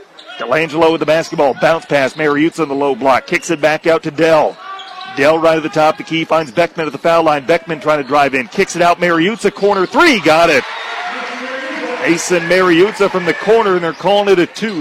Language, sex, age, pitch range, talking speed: English, male, 40-59, 160-195 Hz, 225 wpm